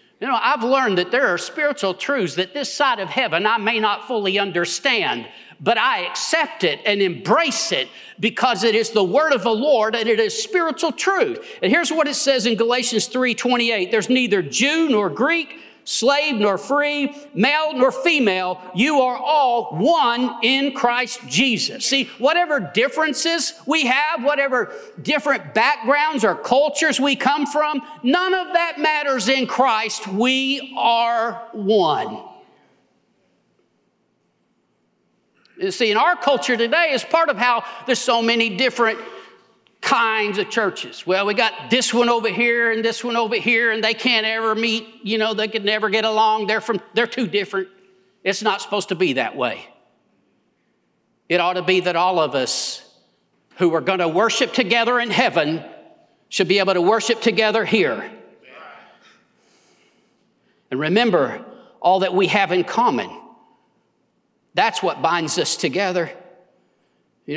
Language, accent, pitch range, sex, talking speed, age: English, American, 210-275 Hz, male, 160 wpm, 50-69